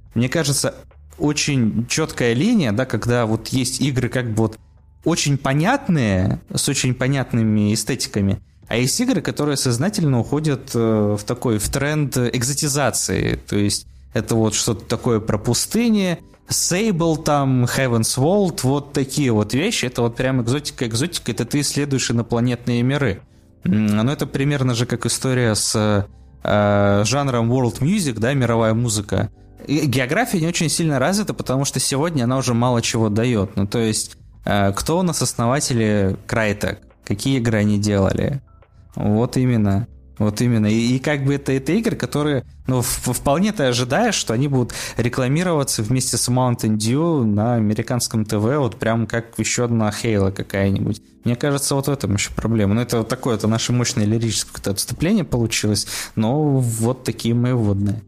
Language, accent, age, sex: Russian, native, 20-39, male